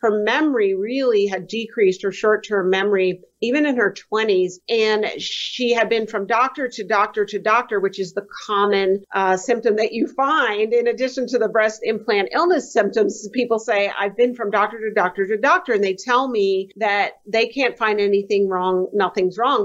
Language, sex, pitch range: English, female, 200-245 Hz